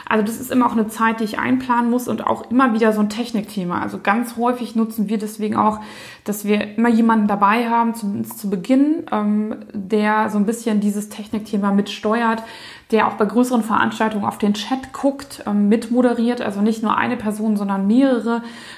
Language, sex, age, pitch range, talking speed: German, female, 20-39, 205-245 Hz, 185 wpm